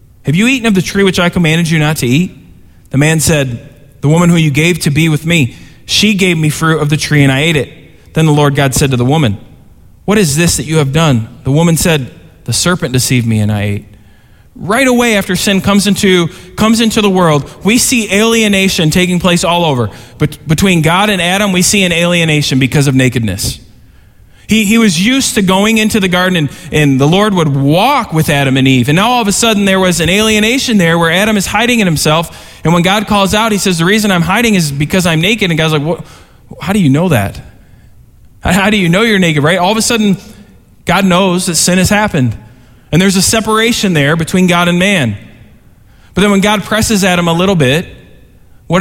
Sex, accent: male, American